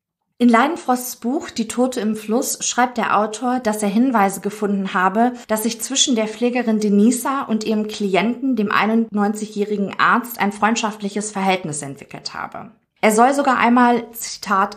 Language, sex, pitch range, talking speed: German, female, 200-240 Hz, 150 wpm